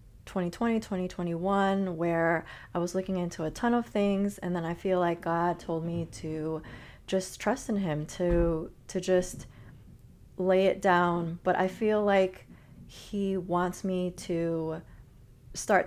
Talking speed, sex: 150 wpm, female